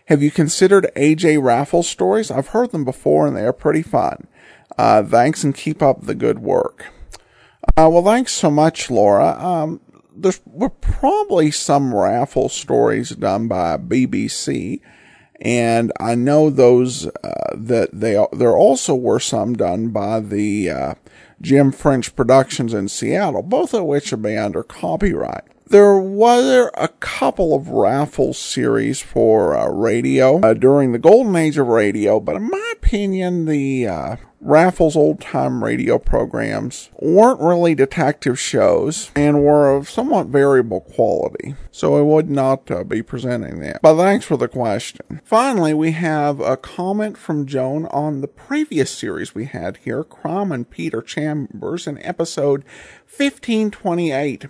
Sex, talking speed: male, 150 wpm